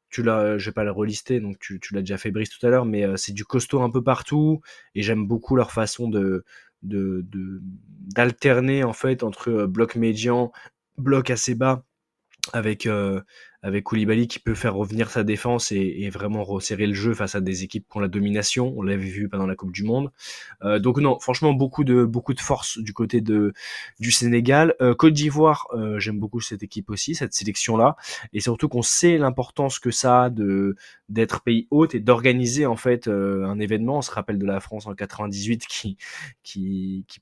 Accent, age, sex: French, 20-39, male